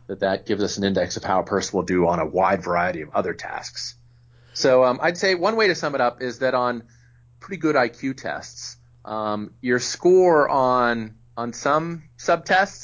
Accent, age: American, 30-49